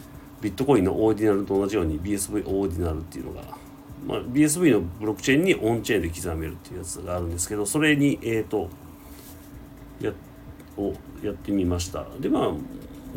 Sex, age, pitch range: male, 40-59, 90-140 Hz